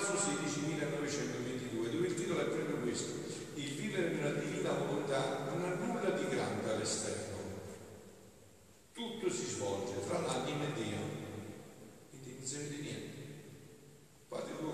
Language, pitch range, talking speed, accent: Italian, 120-150 Hz, 135 wpm, native